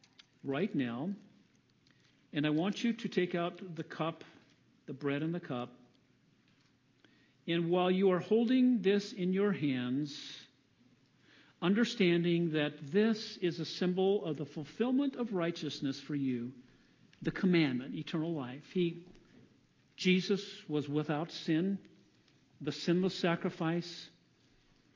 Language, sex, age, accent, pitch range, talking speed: English, male, 50-69, American, 140-185 Hz, 120 wpm